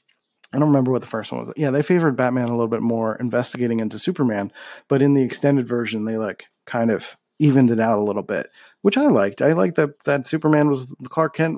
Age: 30-49